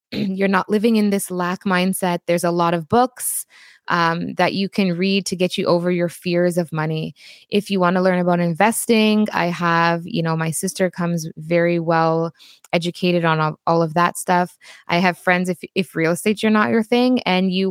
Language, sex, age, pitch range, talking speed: English, female, 20-39, 165-195 Hz, 205 wpm